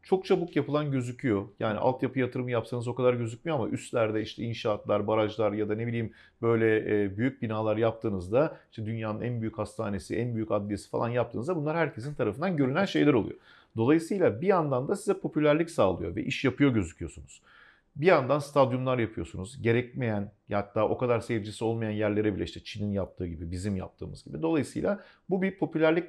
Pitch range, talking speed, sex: 110-155 Hz, 170 wpm, male